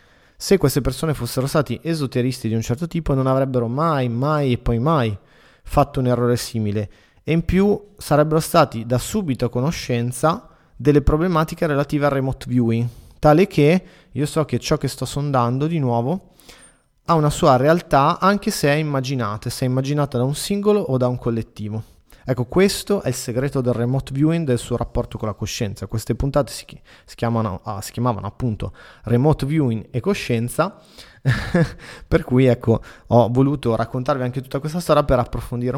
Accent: native